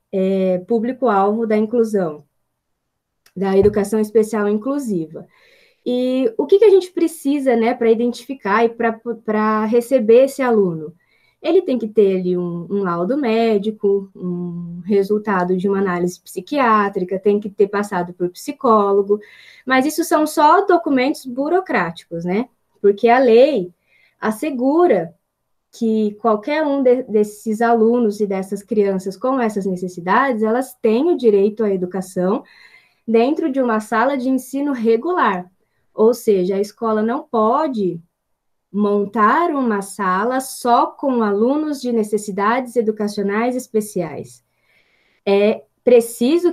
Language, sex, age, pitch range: Portuguese, female, 20-39, 200-255 Hz